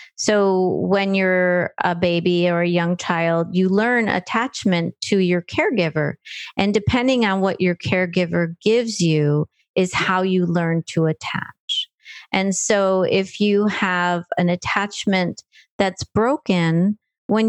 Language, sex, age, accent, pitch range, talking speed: English, female, 40-59, American, 175-210 Hz, 135 wpm